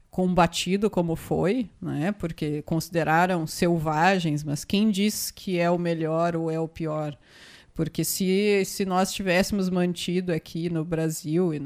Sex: female